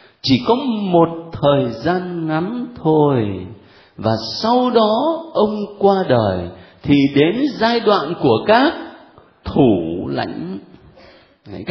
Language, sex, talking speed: Vietnamese, male, 115 wpm